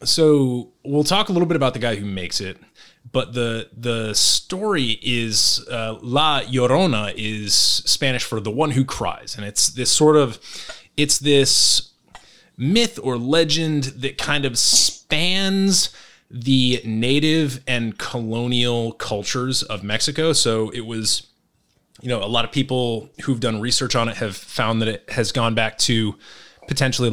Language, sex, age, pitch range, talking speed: English, male, 30-49, 110-135 Hz, 155 wpm